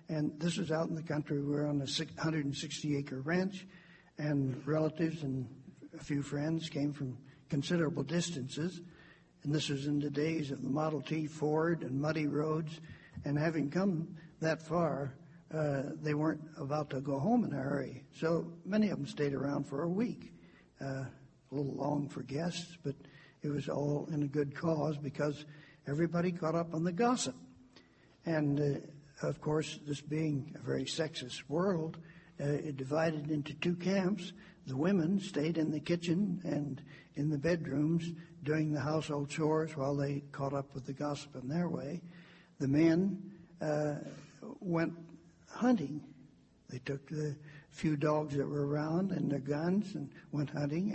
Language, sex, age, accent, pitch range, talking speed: English, male, 60-79, American, 145-165 Hz, 165 wpm